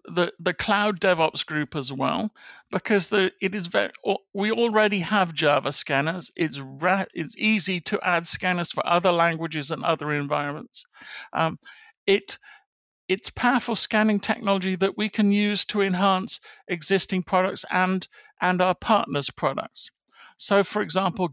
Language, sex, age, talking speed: English, male, 50-69, 145 wpm